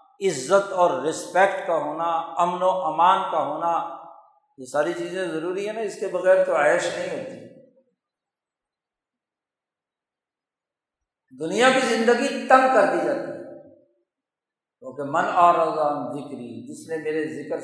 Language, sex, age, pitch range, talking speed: Urdu, male, 60-79, 175-260 Hz, 135 wpm